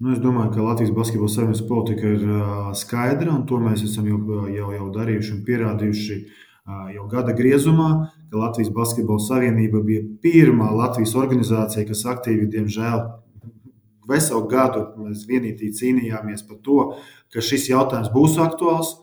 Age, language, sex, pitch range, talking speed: 20-39, English, male, 105-130 Hz, 150 wpm